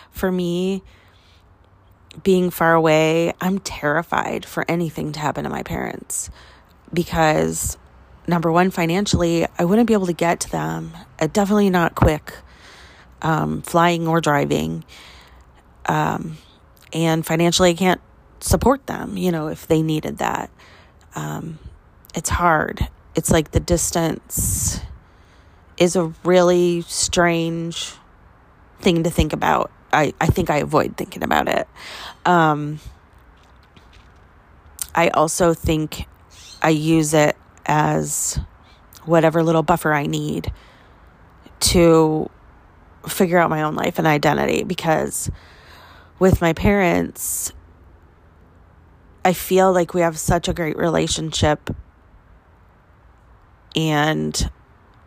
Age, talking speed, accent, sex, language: 30-49, 115 wpm, American, female, English